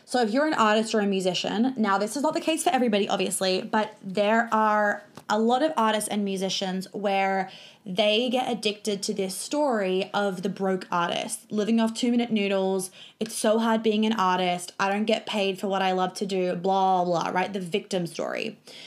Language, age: English, 20-39